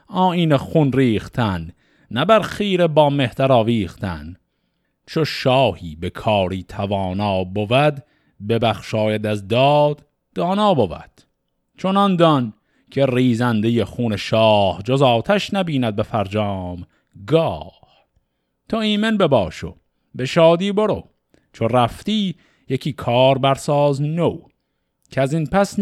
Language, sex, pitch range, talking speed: Persian, male, 105-175 Hz, 110 wpm